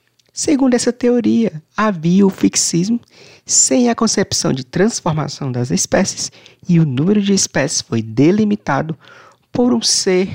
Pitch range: 130-195 Hz